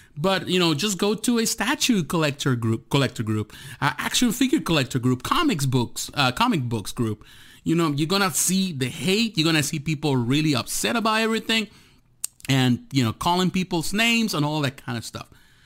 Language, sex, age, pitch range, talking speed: English, male, 30-49, 130-185 Hz, 190 wpm